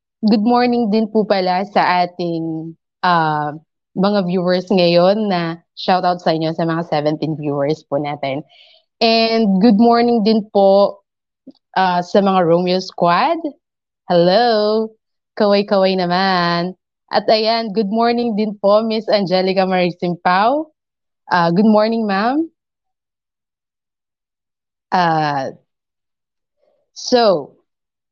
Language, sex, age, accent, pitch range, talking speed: Filipino, female, 20-39, native, 170-220 Hz, 110 wpm